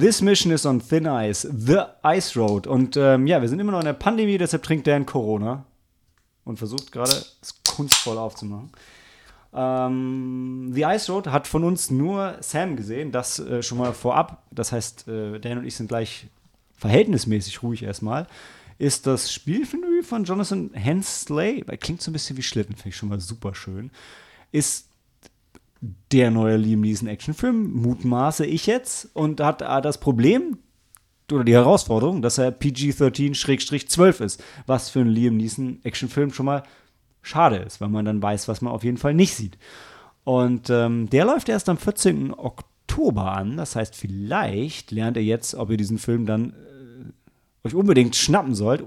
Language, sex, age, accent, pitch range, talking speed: German, male, 30-49, German, 110-150 Hz, 170 wpm